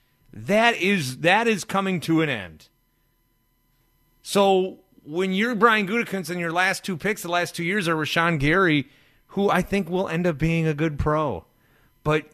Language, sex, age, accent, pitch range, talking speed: English, male, 30-49, American, 145-200 Hz, 175 wpm